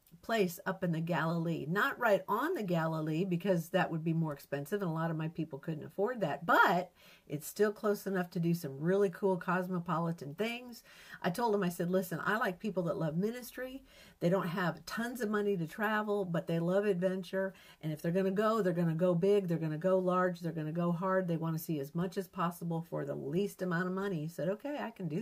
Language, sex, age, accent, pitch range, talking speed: English, female, 50-69, American, 160-195 Hz, 245 wpm